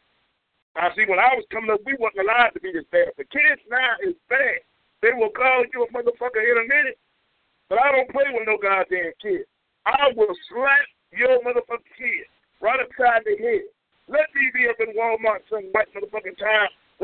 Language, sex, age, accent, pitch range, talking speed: English, male, 50-69, American, 175-275 Hz, 195 wpm